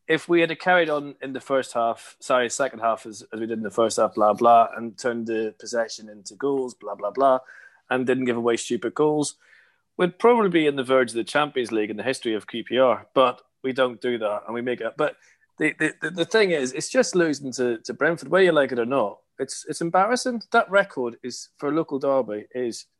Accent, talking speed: British, 235 wpm